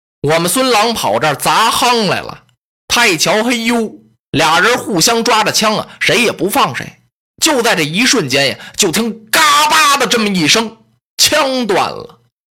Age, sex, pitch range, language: 20-39, male, 150-235 Hz, Chinese